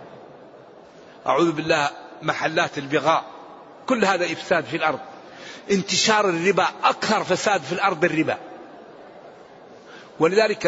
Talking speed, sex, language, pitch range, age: 95 wpm, male, Arabic, 180-215 Hz, 50-69